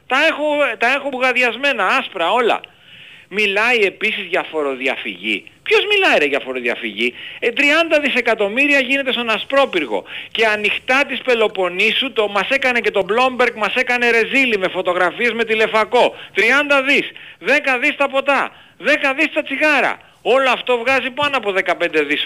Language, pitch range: Greek, 170-265 Hz